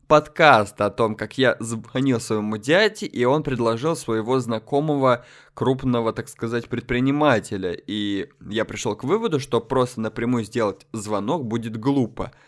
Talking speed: 140 wpm